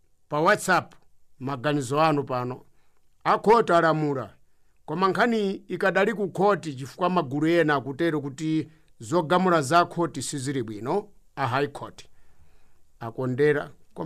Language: English